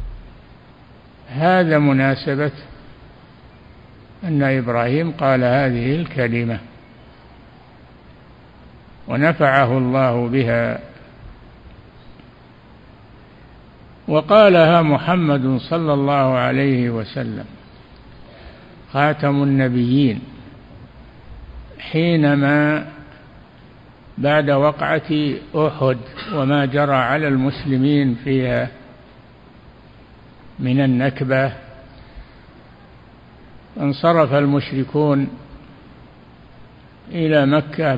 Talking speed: 50 wpm